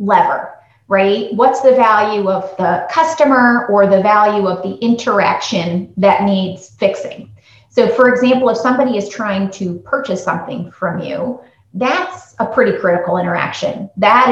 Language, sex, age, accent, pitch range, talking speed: English, female, 30-49, American, 180-220 Hz, 145 wpm